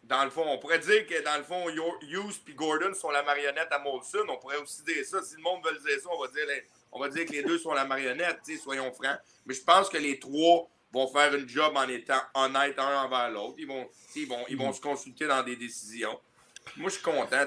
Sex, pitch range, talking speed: male, 130-165 Hz, 260 wpm